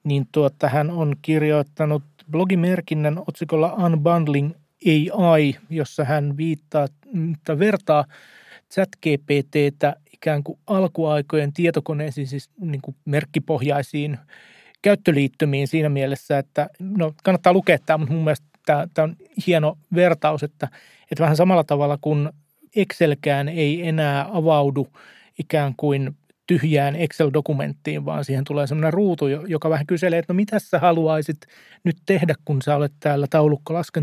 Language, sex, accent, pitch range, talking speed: Finnish, male, native, 145-170 Hz, 125 wpm